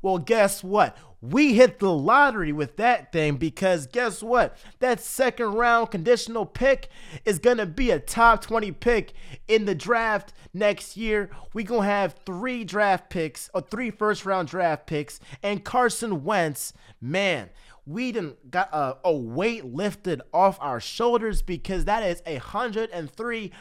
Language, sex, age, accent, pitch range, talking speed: English, male, 30-49, American, 155-220 Hz, 165 wpm